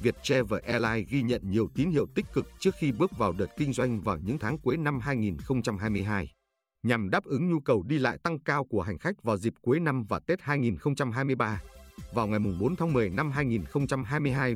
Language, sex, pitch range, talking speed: Vietnamese, male, 105-140 Hz, 200 wpm